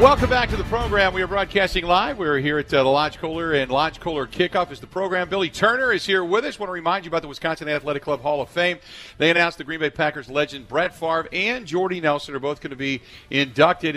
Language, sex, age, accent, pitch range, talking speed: English, male, 50-69, American, 120-160 Hz, 260 wpm